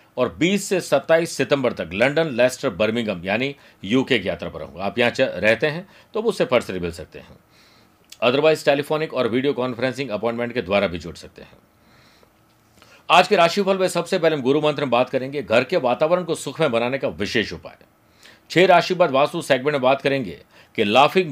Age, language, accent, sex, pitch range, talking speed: 50-69, Hindi, native, male, 120-160 Hz, 190 wpm